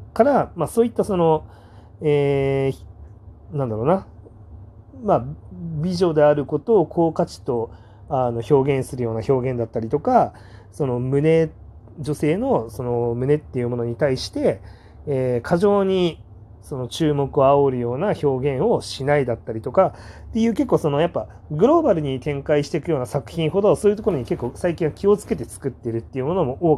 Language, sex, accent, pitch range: Japanese, male, native, 110-165 Hz